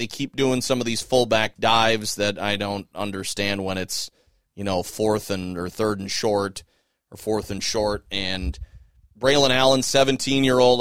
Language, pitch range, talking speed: English, 100-125 Hz, 165 wpm